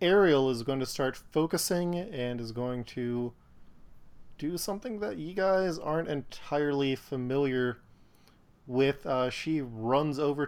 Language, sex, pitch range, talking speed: English, male, 115-140 Hz, 130 wpm